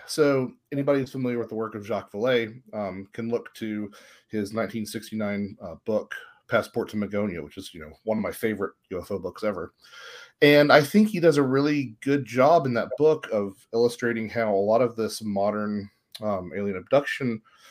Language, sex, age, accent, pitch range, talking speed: English, male, 30-49, American, 100-130 Hz, 185 wpm